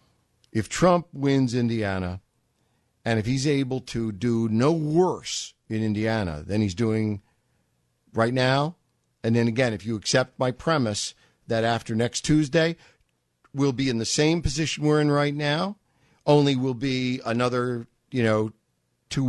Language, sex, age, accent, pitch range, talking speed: English, male, 50-69, American, 115-150 Hz, 150 wpm